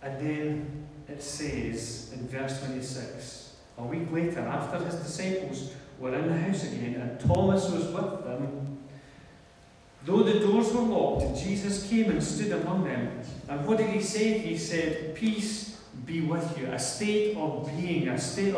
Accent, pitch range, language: British, 125-170 Hz, English